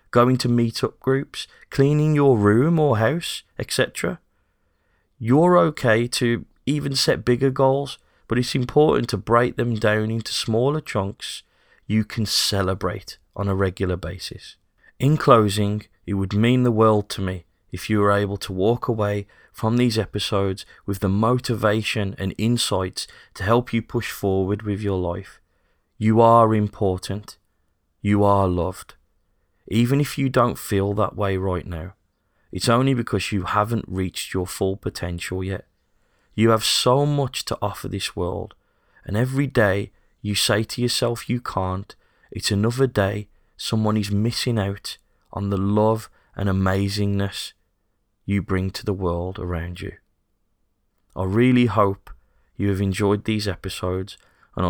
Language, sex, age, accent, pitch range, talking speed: English, male, 30-49, British, 95-120 Hz, 150 wpm